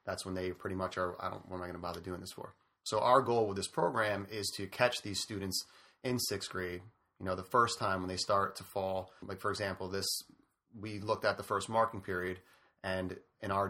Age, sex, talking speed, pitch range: 30-49, male, 240 wpm, 95-110 Hz